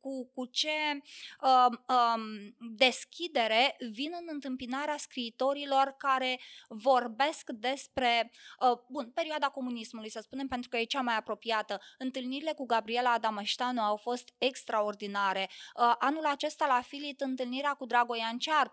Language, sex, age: Romanian, female, 20-39